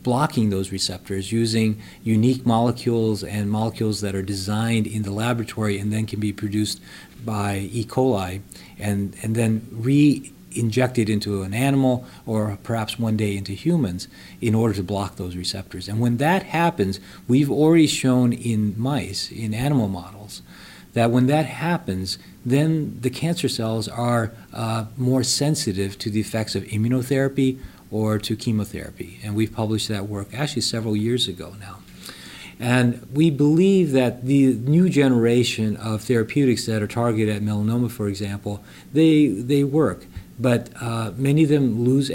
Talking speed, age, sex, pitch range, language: 155 wpm, 40-59, male, 105-125 Hz, English